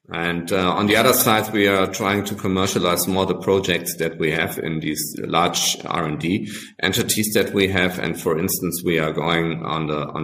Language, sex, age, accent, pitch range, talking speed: English, male, 50-69, German, 85-110 Hz, 200 wpm